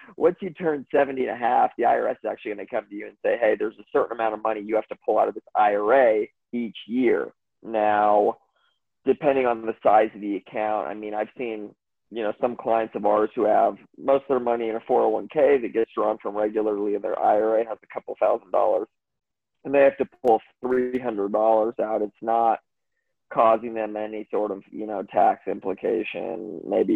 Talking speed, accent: 210 wpm, American